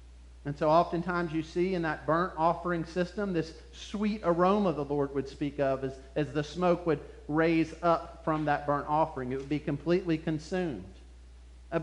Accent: American